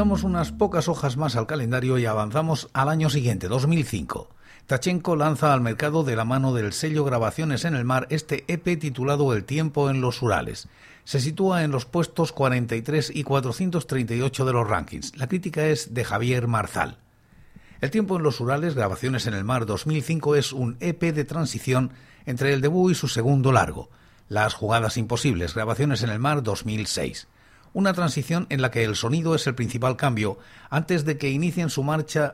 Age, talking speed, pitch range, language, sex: 60-79, 180 wpm, 120-155 Hz, Spanish, male